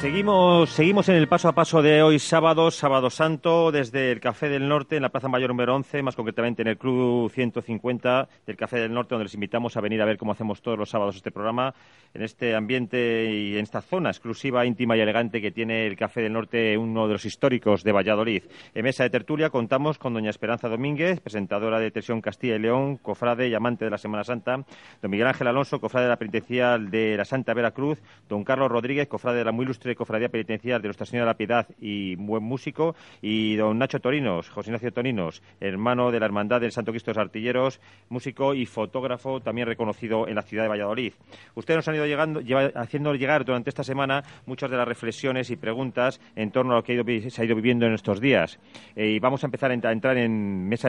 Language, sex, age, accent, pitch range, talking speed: Spanish, male, 40-59, Spanish, 110-135 Hz, 225 wpm